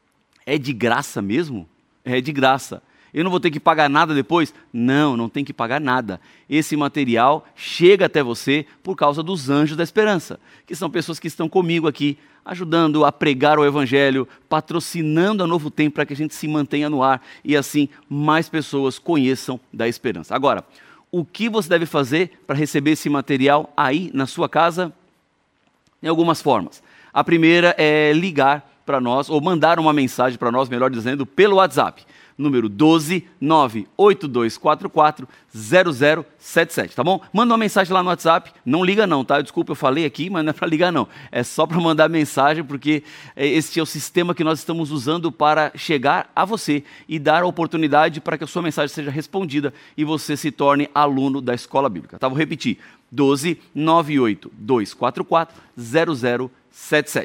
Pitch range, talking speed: 140-165 Hz, 175 wpm